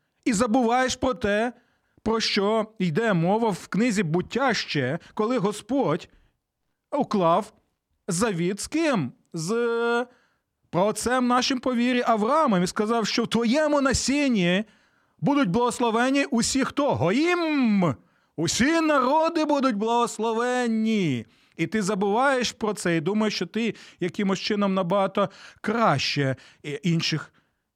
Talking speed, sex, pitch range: 110 wpm, male, 180-245 Hz